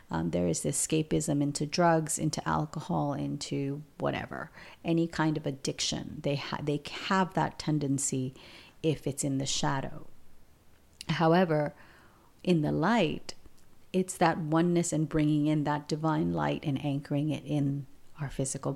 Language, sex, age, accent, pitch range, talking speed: English, female, 40-59, American, 140-170 Hz, 145 wpm